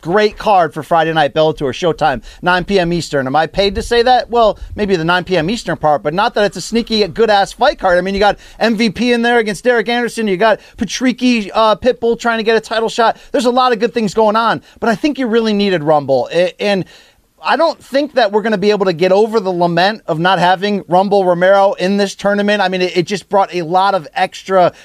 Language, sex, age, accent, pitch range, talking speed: English, male, 30-49, American, 180-220 Hz, 250 wpm